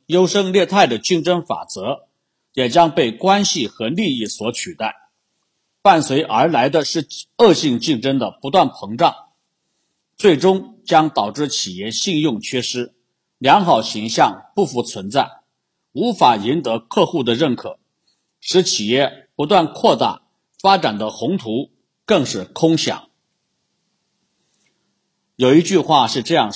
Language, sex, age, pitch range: Chinese, male, 50-69, 125-190 Hz